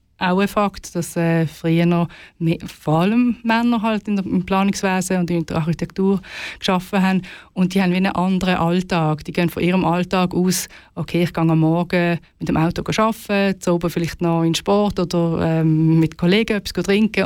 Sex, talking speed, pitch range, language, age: female, 190 wpm, 165-195 Hz, German, 30-49